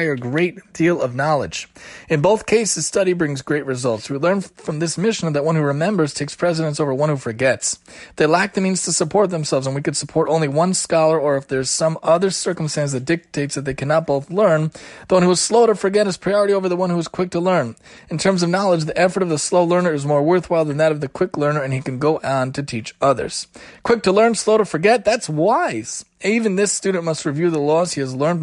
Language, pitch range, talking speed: English, 135-180 Hz, 245 wpm